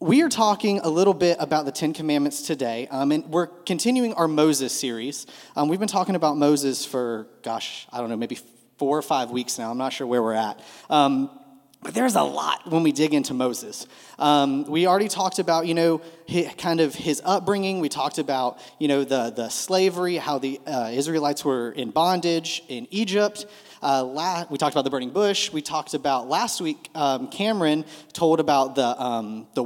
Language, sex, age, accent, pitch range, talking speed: English, male, 30-49, American, 140-195 Hz, 200 wpm